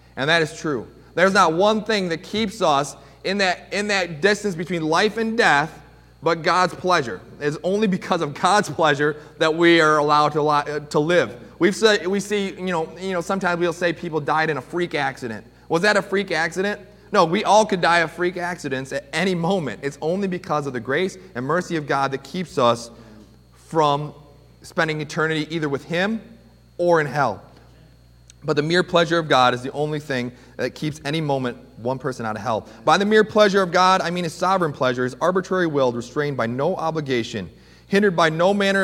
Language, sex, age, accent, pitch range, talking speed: English, male, 30-49, American, 135-180 Hz, 200 wpm